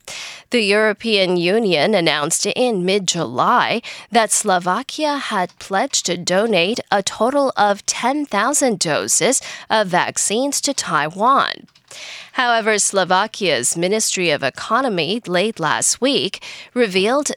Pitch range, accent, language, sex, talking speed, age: 185-255 Hz, American, English, female, 105 wpm, 10-29